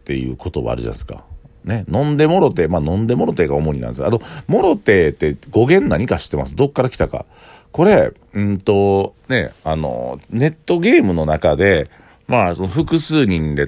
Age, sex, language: 50-69, male, Japanese